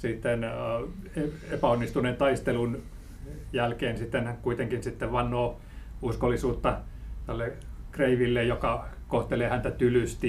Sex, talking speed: male, 85 wpm